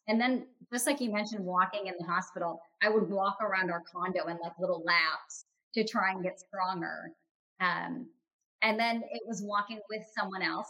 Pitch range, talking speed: 185-235 Hz, 190 wpm